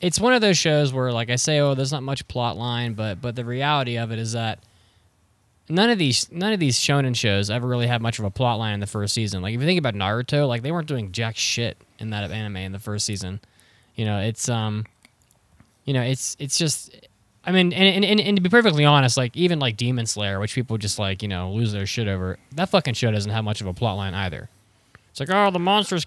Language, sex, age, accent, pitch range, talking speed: English, male, 10-29, American, 105-140 Hz, 260 wpm